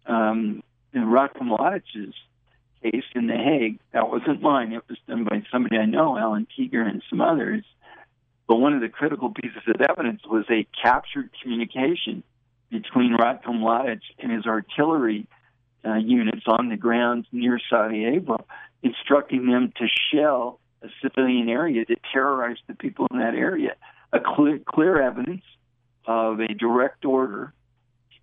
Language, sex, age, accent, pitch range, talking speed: English, male, 60-79, American, 115-145 Hz, 150 wpm